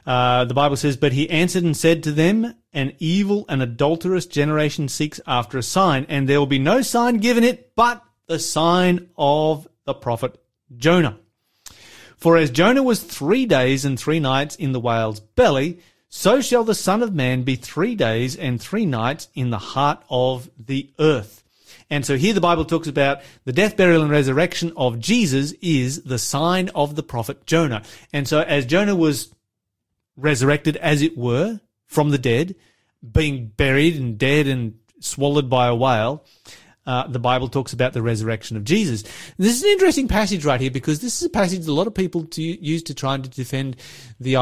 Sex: male